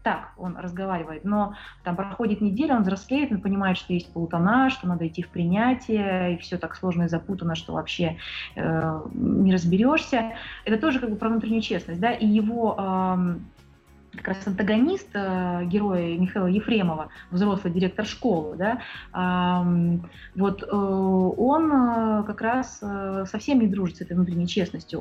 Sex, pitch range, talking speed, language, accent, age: female, 180-225 Hz, 160 wpm, Russian, native, 20-39